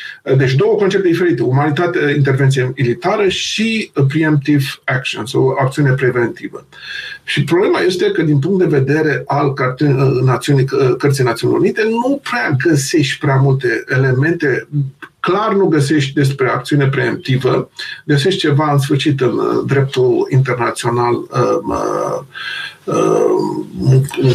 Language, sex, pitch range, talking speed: Romanian, male, 135-195 Hz, 115 wpm